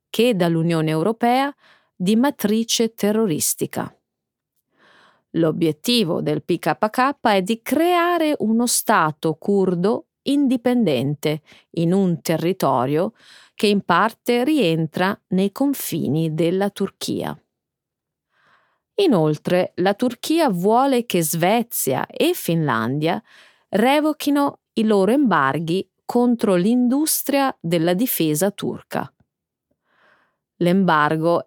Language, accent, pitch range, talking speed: Italian, native, 170-250 Hz, 85 wpm